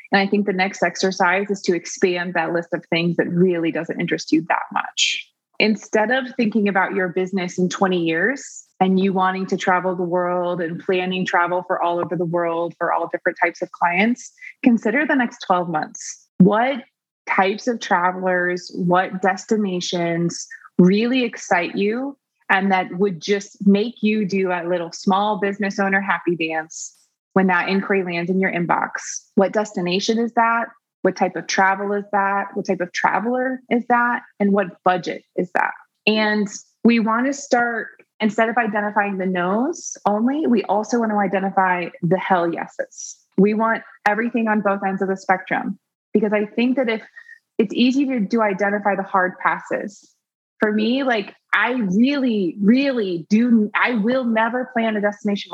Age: 20-39